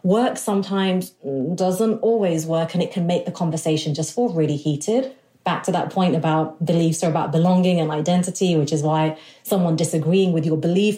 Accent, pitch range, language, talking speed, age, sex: British, 165-205 Hz, English, 185 wpm, 30-49, female